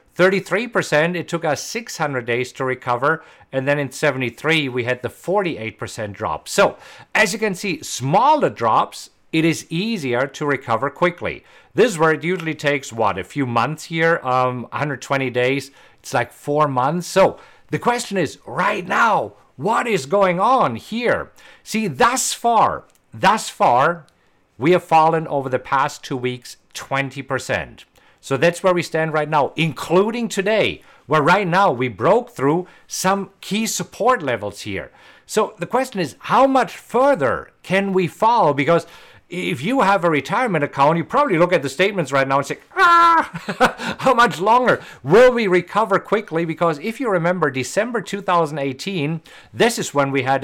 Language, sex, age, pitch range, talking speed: English, male, 50-69, 135-195 Hz, 165 wpm